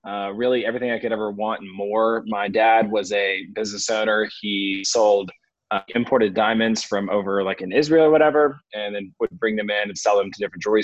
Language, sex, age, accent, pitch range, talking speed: English, male, 20-39, American, 105-120 Hz, 215 wpm